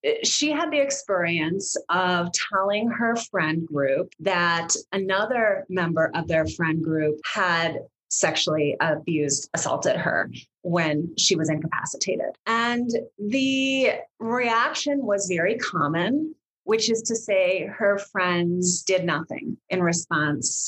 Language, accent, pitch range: English, American, 170-215 Hz